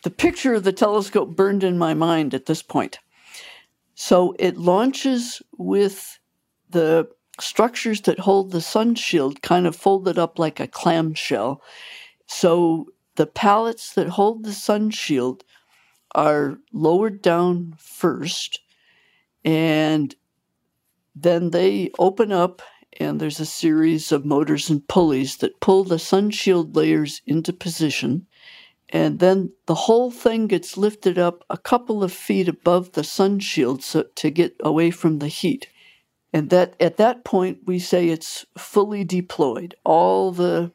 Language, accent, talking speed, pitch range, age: English, American, 145 wpm, 155-195 Hz, 60-79